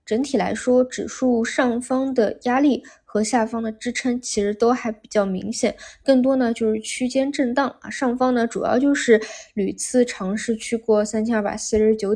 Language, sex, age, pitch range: Chinese, female, 20-39, 210-250 Hz